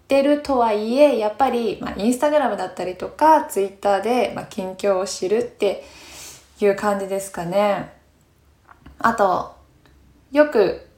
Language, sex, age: Japanese, female, 20-39